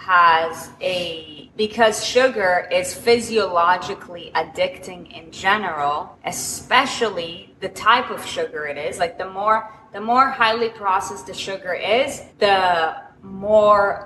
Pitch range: 175-225 Hz